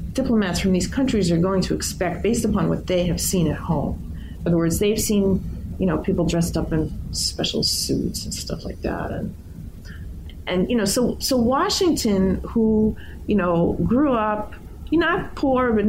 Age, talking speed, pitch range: 30-49, 190 wpm, 165-215 Hz